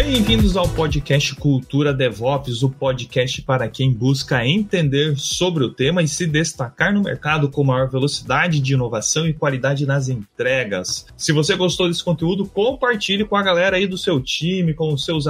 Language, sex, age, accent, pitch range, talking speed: Portuguese, male, 30-49, Brazilian, 135-185 Hz, 175 wpm